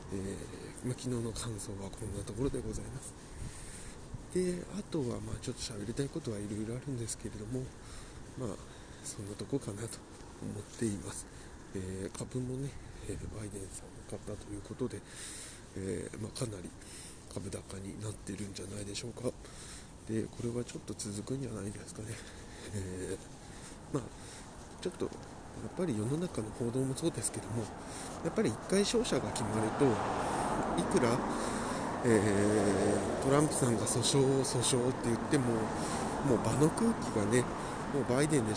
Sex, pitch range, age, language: male, 105-130 Hz, 20-39, Japanese